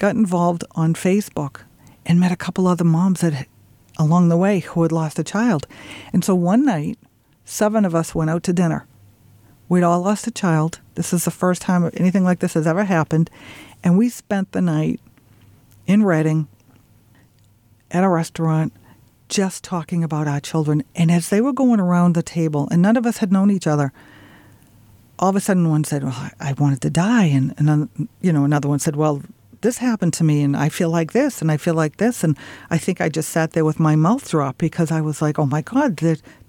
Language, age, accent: English, 50-69, American